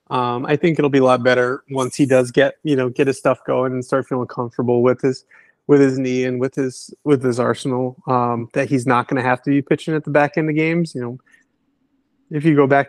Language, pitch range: English, 125-145 Hz